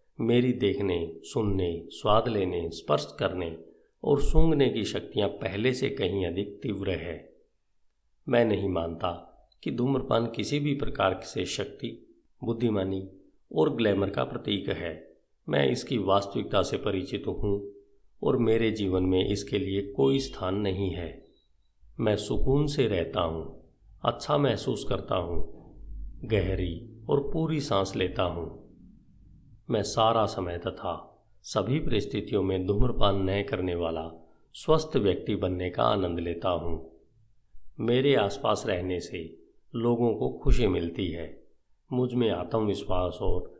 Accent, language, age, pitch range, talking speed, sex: native, Hindi, 50-69, 90-120 Hz, 130 wpm, male